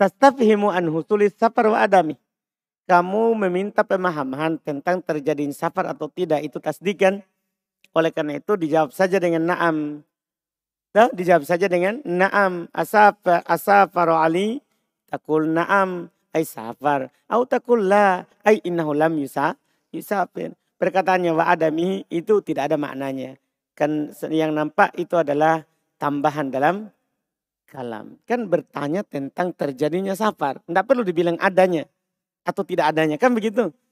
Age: 50-69